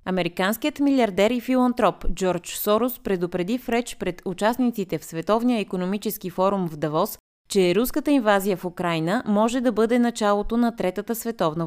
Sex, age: female, 20-39